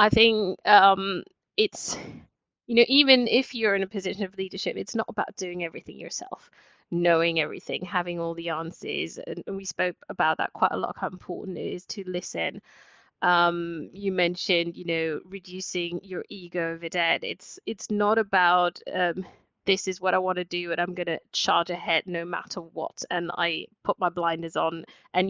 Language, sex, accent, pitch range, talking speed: English, female, British, 175-200 Hz, 185 wpm